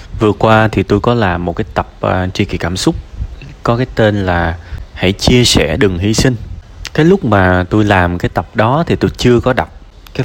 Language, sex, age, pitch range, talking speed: Vietnamese, male, 20-39, 90-110 Hz, 215 wpm